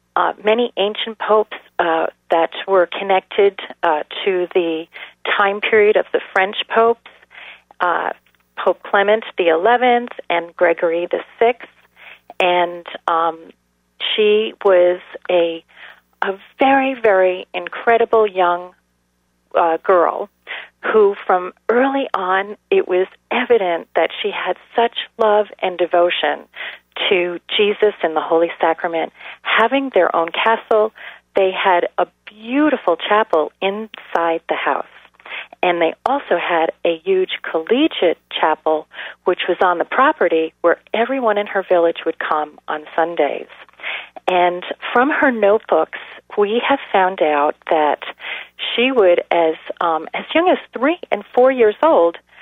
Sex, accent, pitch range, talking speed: female, American, 170-245 Hz, 125 wpm